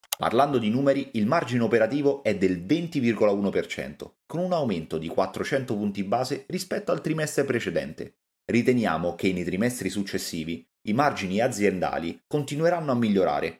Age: 30-49